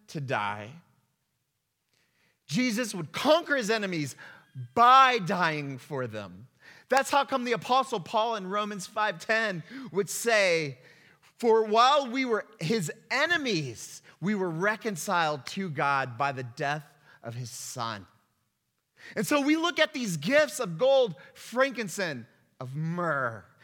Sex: male